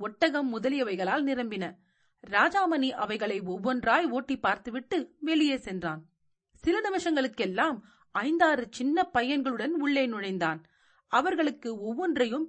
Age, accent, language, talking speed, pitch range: 40-59, native, Tamil, 90 wpm, 205-290 Hz